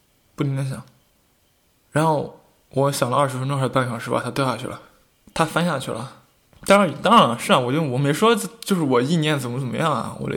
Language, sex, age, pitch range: Chinese, male, 20-39, 130-165 Hz